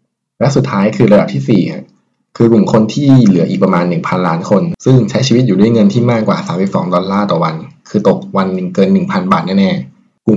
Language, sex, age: Thai, male, 20-39